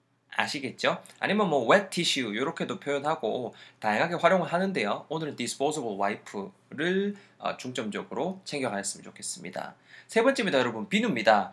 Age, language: 20-39, Korean